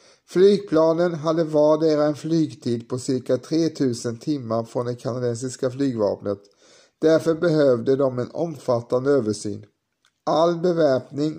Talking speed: 110 wpm